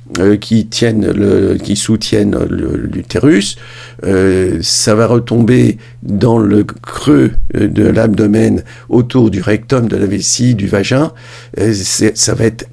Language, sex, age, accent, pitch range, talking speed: French, male, 50-69, French, 105-120 Hz, 125 wpm